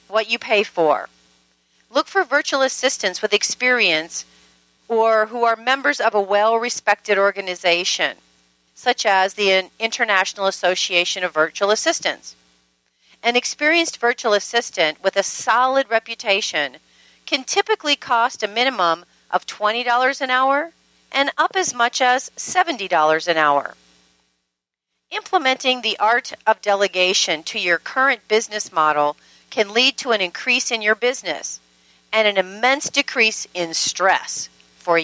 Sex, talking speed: female, 130 wpm